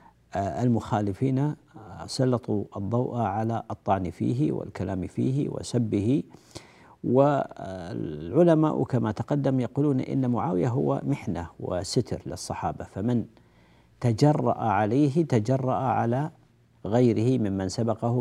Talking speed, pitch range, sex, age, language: 90 wpm, 100-125 Hz, male, 50-69, Arabic